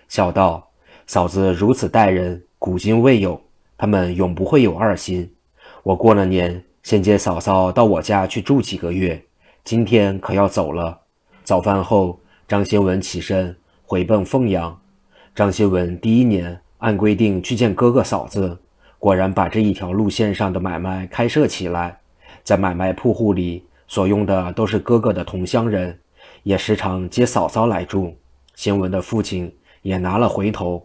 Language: Chinese